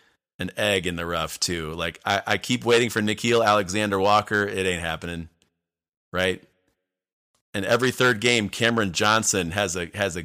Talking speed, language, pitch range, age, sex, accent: 165 wpm, English, 95-125 Hz, 30-49, male, American